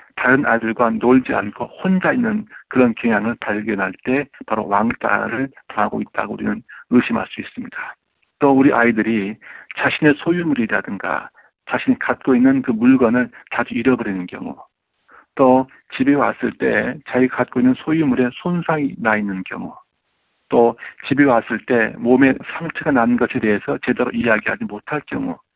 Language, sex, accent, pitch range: Korean, male, native, 120-155 Hz